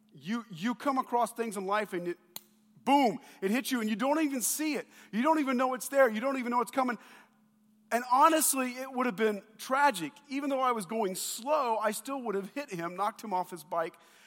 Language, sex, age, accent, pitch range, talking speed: English, male, 40-59, American, 190-245 Hz, 230 wpm